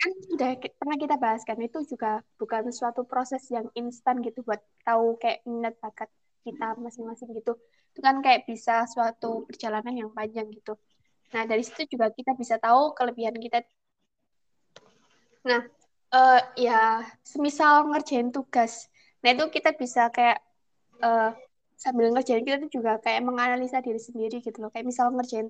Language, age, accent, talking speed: Indonesian, 20-39, native, 155 wpm